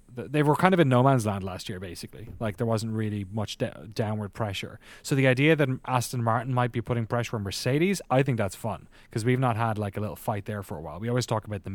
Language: English